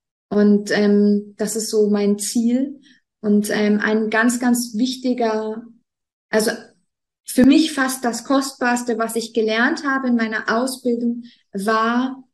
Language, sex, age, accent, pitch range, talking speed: German, female, 20-39, German, 225-255 Hz, 130 wpm